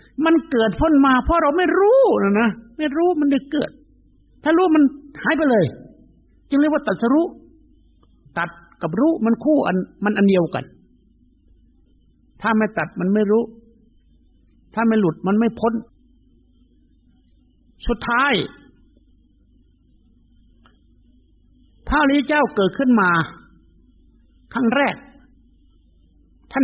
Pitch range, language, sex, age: 190-285 Hz, Thai, male, 60-79